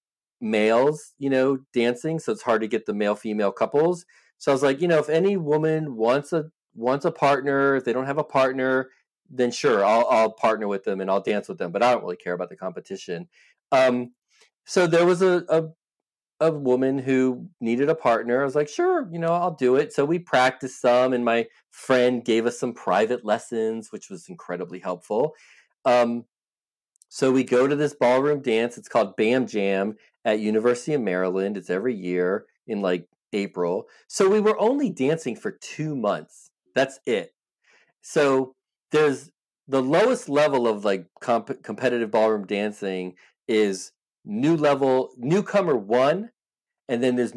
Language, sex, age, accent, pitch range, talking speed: English, male, 40-59, American, 110-150 Hz, 180 wpm